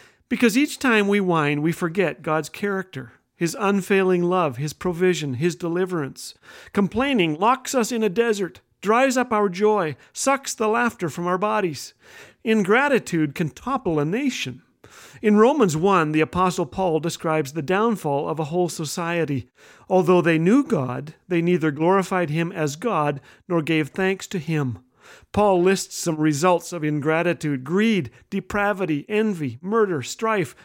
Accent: American